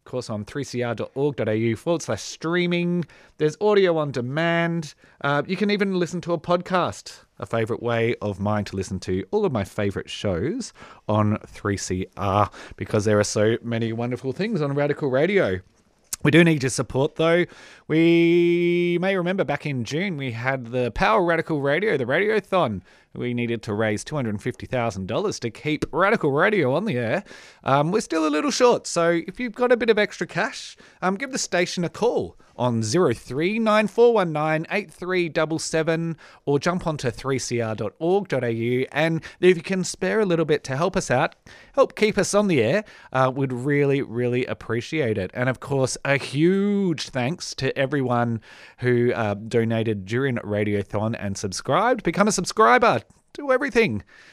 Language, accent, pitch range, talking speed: English, Australian, 115-175 Hz, 160 wpm